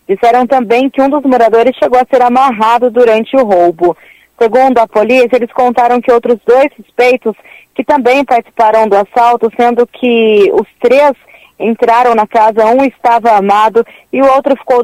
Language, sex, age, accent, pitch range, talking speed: Portuguese, female, 20-39, Brazilian, 215-250 Hz, 165 wpm